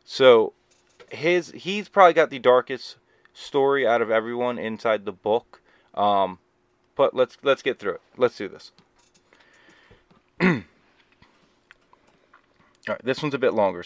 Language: English